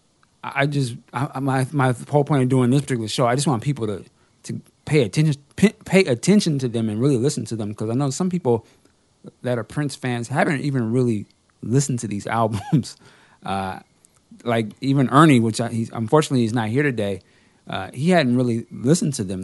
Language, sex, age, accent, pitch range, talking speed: English, male, 30-49, American, 110-145 Hz, 200 wpm